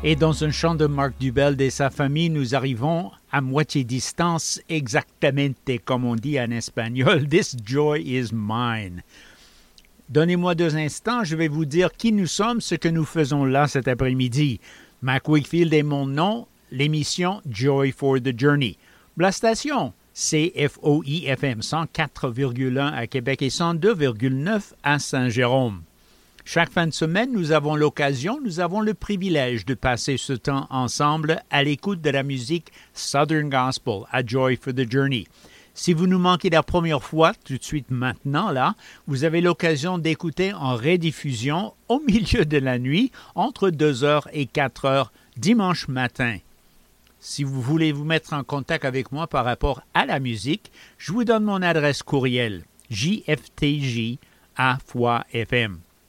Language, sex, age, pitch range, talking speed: English, male, 60-79, 130-165 Hz, 150 wpm